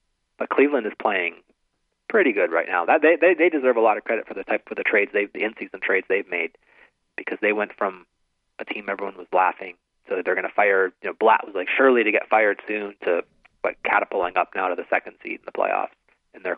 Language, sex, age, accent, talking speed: English, male, 30-49, American, 250 wpm